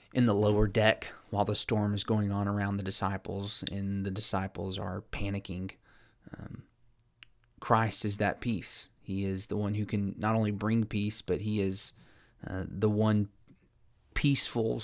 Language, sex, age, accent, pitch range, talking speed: English, male, 20-39, American, 95-110 Hz, 160 wpm